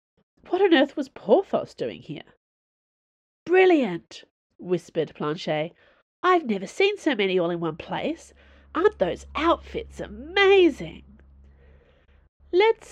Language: English